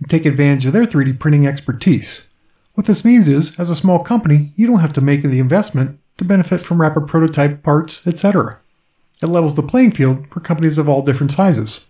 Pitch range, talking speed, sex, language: 140-180 Hz, 205 wpm, male, English